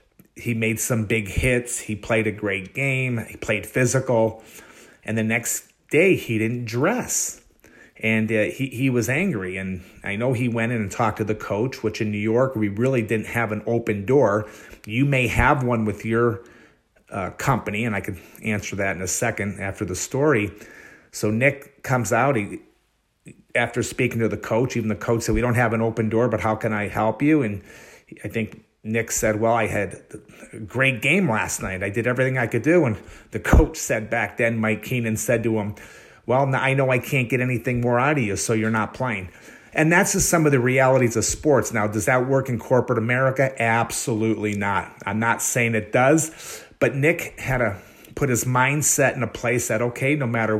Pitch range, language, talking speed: 110-125 Hz, English, 210 wpm